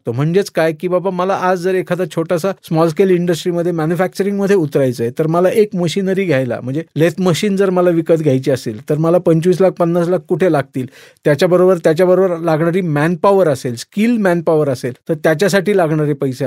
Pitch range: 155-195 Hz